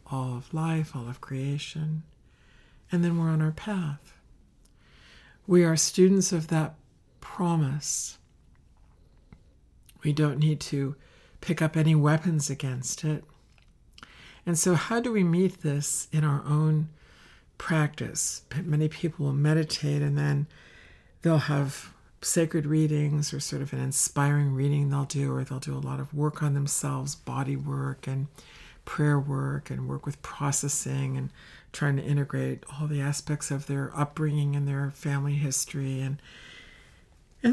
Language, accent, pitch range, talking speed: English, American, 135-155 Hz, 145 wpm